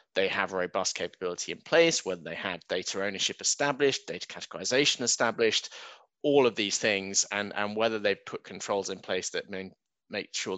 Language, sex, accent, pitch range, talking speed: English, male, British, 95-110 Hz, 185 wpm